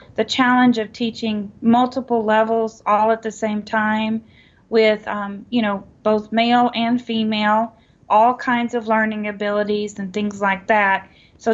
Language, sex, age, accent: English, female, 30-49, American